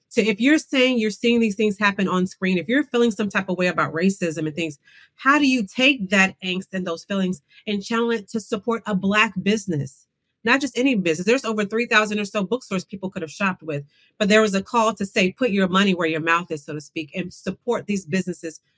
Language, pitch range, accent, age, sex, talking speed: English, 165-210 Hz, American, 40-59, female, 240 wpm